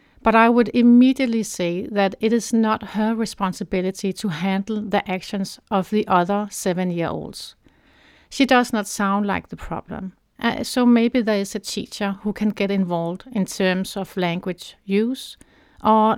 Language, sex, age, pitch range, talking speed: English, female, 60-79, 185-225 Hz, 160 wpm